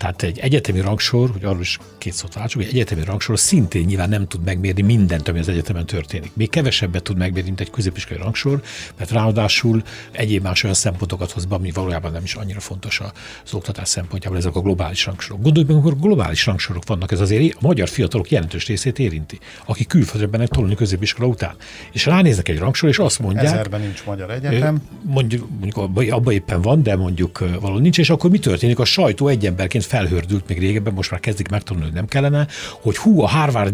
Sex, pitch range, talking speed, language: male, 95-125 Hz, 195 wpm, Hungarian